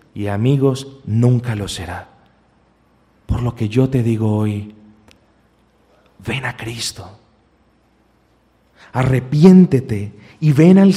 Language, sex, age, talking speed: Spanish, male, 40-59, 105 wpm